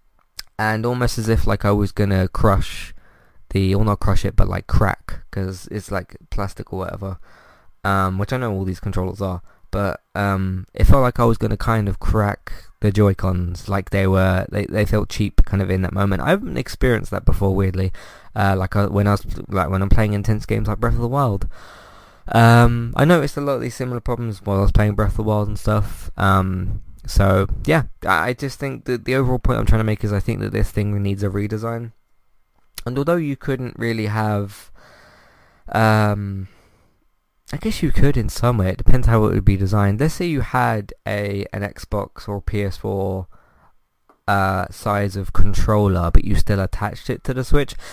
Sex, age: male, 20-39